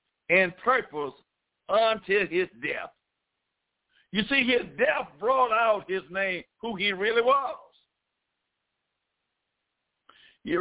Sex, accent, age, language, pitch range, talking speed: male, American, 60-79, English, 190-230 Hz, 100 wpm